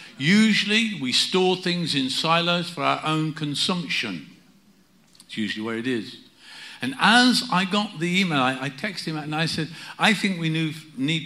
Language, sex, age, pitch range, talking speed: English, male, 50-69, 130-170 Hz, 170 wpm